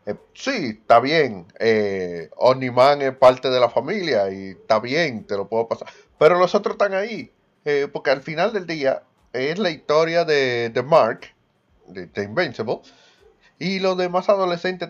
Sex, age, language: male, 30-49, Spanish